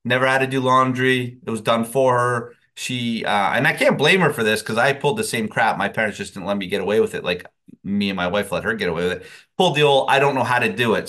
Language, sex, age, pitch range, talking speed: English, male, 30-49, 115-145 Hz, 305 wpm